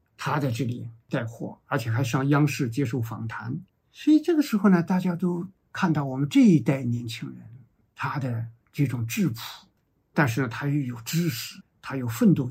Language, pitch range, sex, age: Chinese, 120-165 Hz, male, 50-69